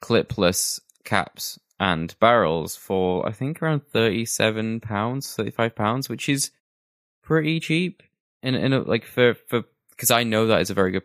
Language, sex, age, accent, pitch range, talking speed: English, male, 20-39, British, 90-115 Hz, 150 wpm